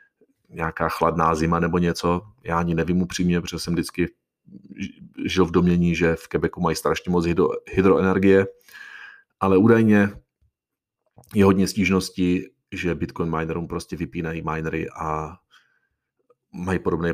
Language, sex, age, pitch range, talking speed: Czech, male, 40-59, 85-100 Hz, 125 wpm